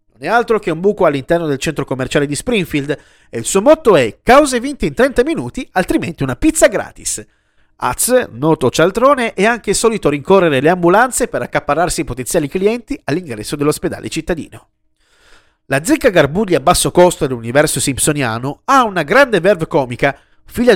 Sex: male